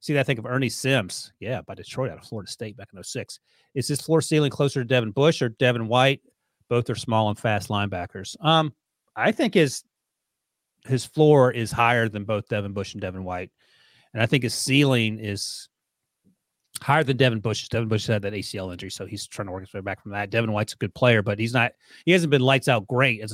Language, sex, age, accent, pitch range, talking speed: English, male, 30-49, American, 110-140 Hz, 230 wpm